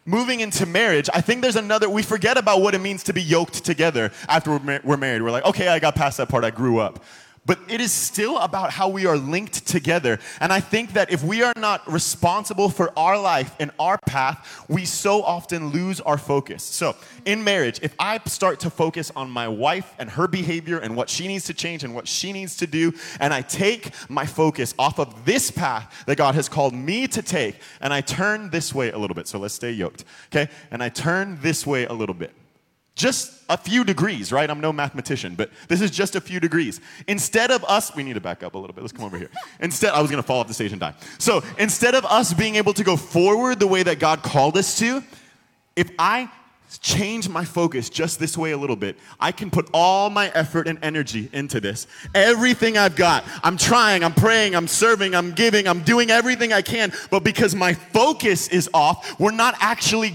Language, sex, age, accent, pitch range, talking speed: English, male, 20-39, American, 150-205 Hz, 230 wpm